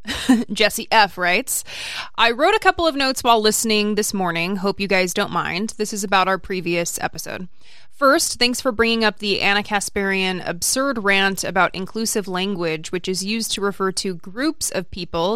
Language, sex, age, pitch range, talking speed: English, female, 20-39, 185-230 Hz, 180 wpm